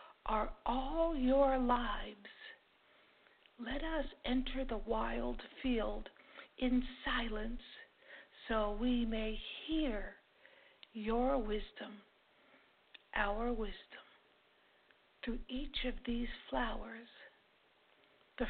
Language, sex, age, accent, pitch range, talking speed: English, female, 60-79, American, 220-270 Hz, 85 wpm